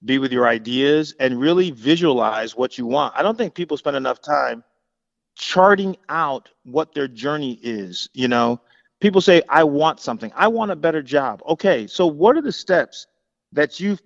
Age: 30-49